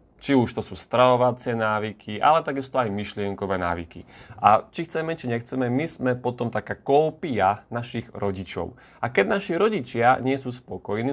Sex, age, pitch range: male, 30-49, 110-135 Hz